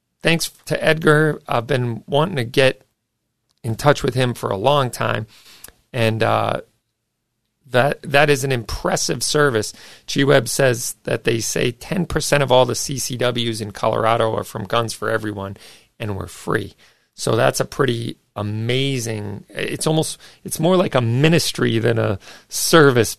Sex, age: male, 40-59